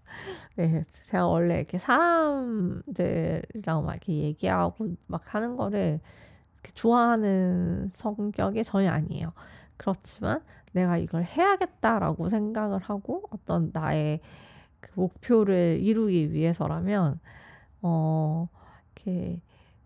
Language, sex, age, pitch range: Korean, female, 20-39, 160-215 Hz